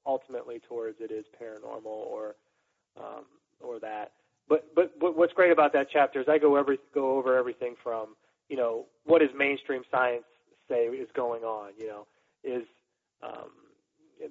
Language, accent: English, American